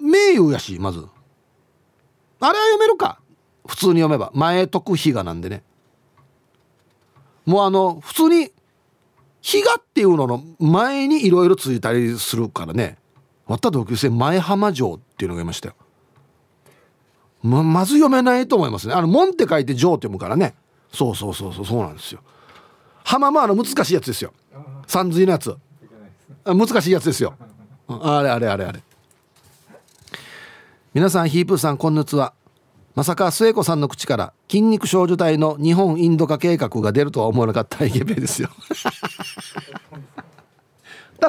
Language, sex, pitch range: Japanese, male, 125-200 Hz